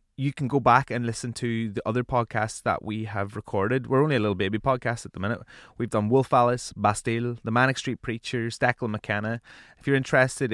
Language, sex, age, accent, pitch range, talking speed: English, male, 20-39, Irish, 105-120 Hz, 210 wpm